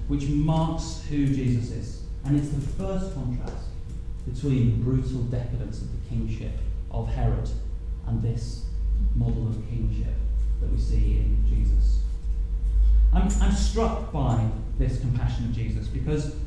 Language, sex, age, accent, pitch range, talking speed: English, male, 30-49, British, 80-135 Hz, 135 wpm